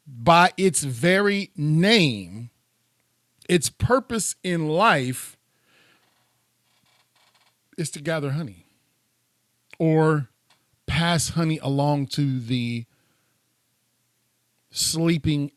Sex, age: male, 40-59